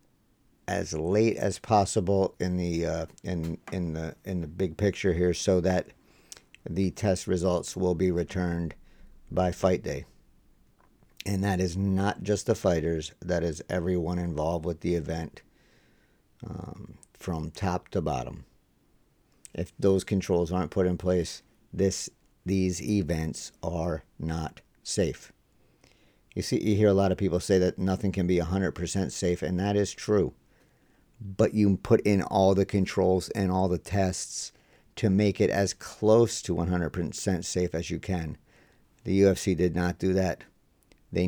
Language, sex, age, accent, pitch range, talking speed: English, male, 50-69, American, 85-95 Hz, 155 wpm